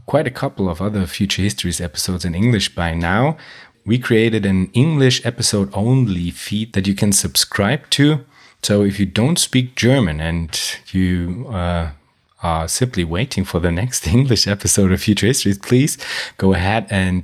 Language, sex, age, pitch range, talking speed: German, male, 30-49, 90-120 Hz, 165 wpm